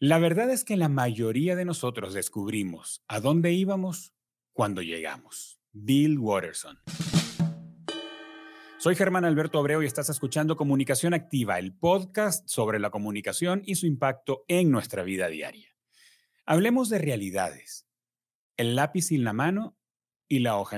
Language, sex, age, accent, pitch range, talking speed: Spanish, male, 30-49, Mexican, 120-175 Hz, 140 wpm